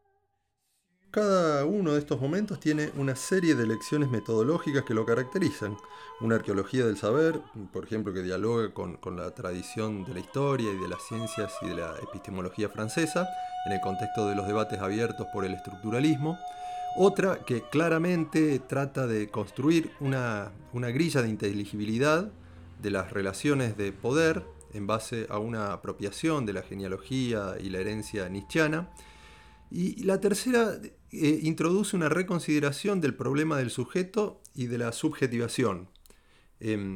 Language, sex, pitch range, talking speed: Spanish, male, 110-165 Hz, 150 wpm